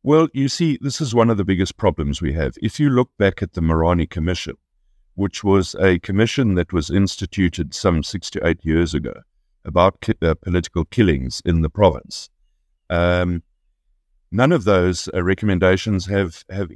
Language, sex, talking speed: English, male, 170 wpm